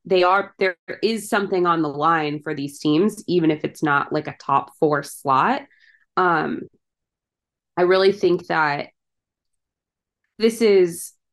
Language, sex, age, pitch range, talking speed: English, female, 20-39, 150-185 Hz, 145 wpm